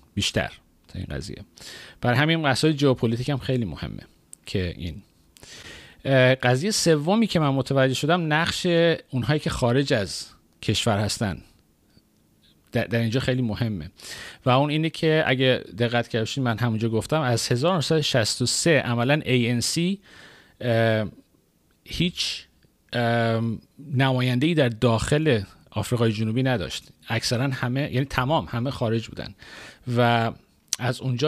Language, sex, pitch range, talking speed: Persian, male, 110-140 Hz, 115 wpm